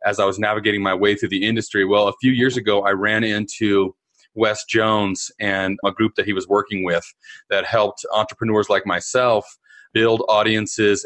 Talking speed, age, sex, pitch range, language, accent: 185 wpm, 30-49, male, 105-120 Hz, English, American